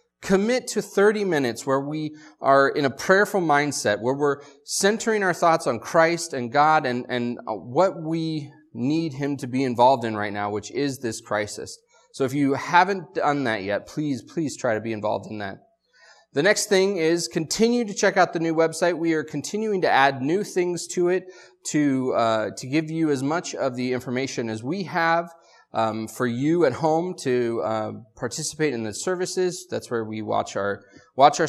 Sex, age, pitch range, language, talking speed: male, 30-49, 125-170 Hz, English, 195 wpm